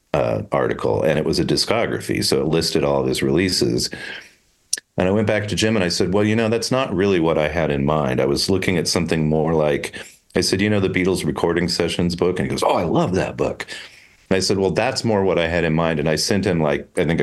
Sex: male